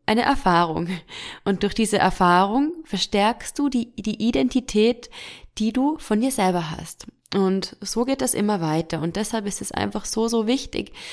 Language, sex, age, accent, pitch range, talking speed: German, female, 20-39, German, 190-260 Hz, 165 wpm